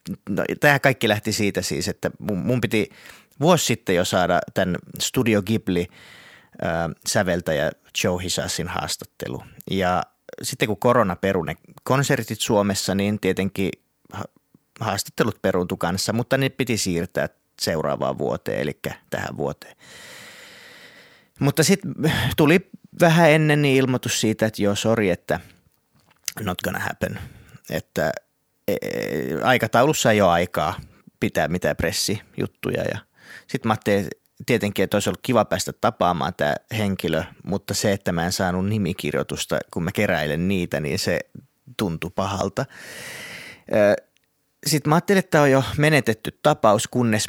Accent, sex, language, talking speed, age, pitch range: native, male, Finnish, 130 wpm, 30-49, 95-130 Hz